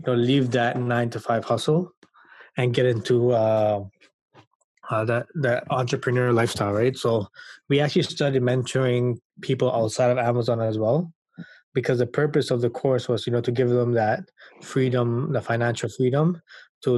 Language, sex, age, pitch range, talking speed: English, male, 20-39, 115-135 Hz, 165 wpm